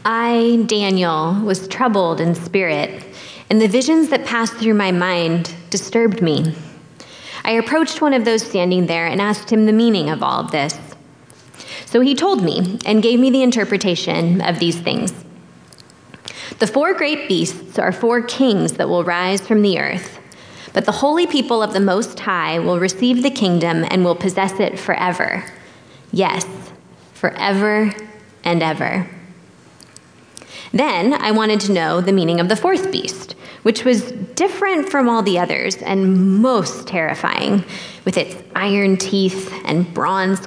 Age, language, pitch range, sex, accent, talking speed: 20-39, English, 180-230 Hz, female, American, 155 wpm